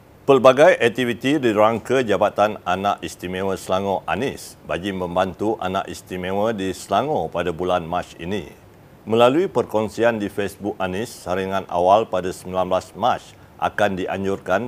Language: Malay